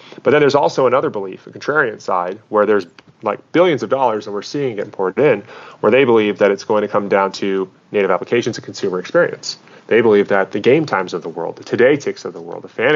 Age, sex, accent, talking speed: 30-49, male, American, 245 wpm